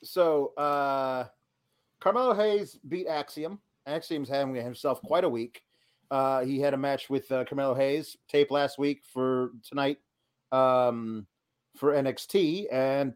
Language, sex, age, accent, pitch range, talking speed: English, male, 40-59, American, 140-205 Hz, 135 wpm